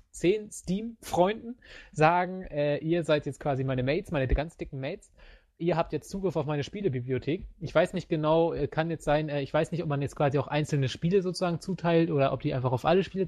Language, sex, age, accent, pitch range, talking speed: English, male, 20-39, German, 135-165 Hz, 215 wpm